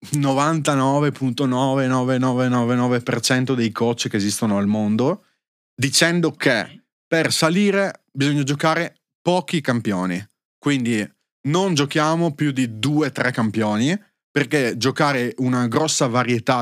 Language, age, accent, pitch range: Italian, 30-49, native, 115-145 Hz